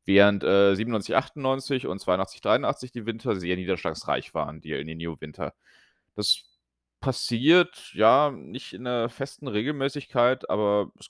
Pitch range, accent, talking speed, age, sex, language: 85-115 Hz, German, 145 wpm, 30-49, male, German